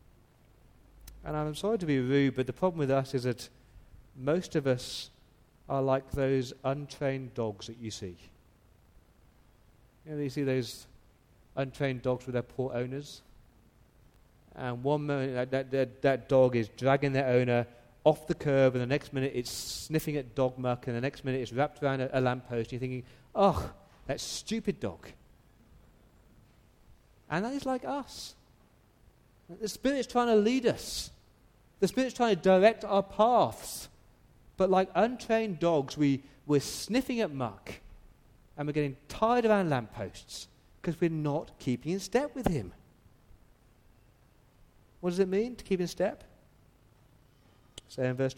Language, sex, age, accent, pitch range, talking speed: English, male, 30-49, British, 120-170 Hz, 160 wpm